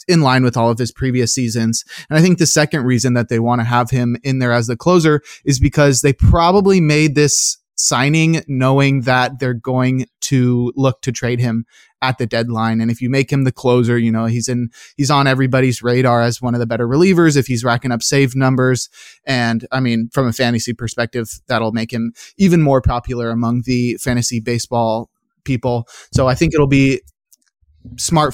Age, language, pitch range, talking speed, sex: 20-39, English, 120-150 Hz, 200 wpm, male